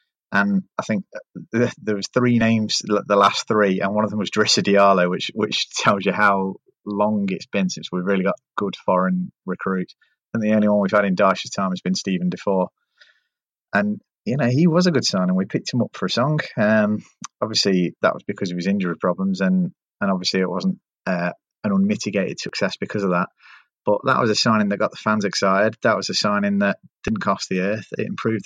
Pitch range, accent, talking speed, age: 100-125 Hz, British, 215 wpm, 30-49